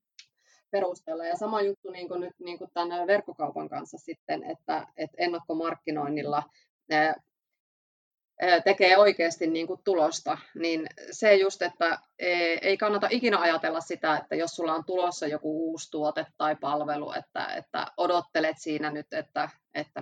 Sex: female